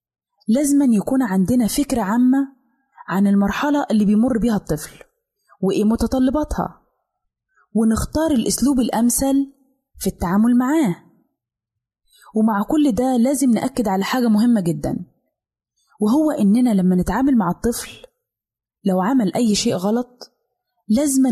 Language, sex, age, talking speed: Arabic, female, 20-39, 115 wpm